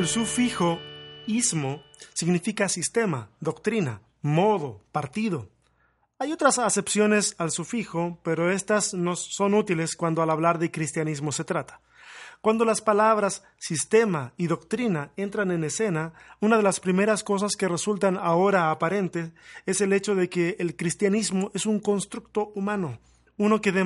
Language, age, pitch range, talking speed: Spanish, 30-49, 165-205 Hz, 145 wpm